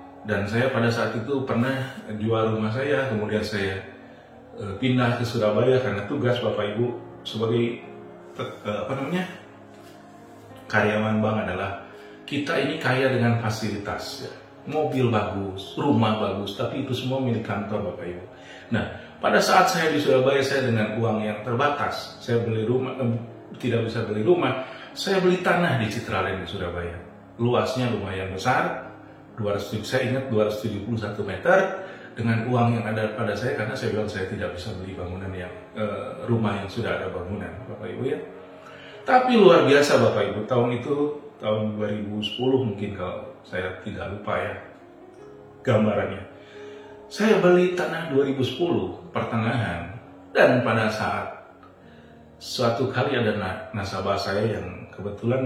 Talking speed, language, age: 140 wpm, Indonesian, 40-59